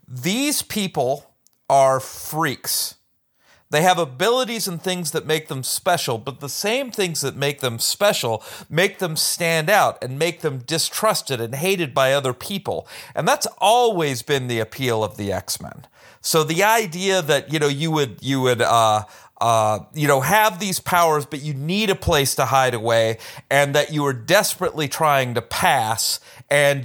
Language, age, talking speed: English, 40-59, 170 wpm